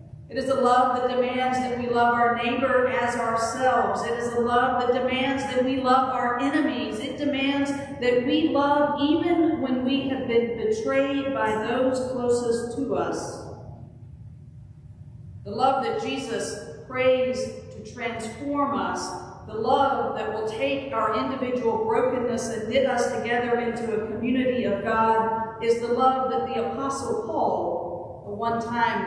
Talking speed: 150 wpm